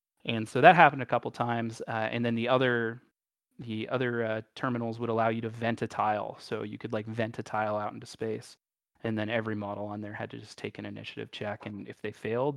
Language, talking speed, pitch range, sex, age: English, 245 wpm, 110-120 Hz, male, 30-49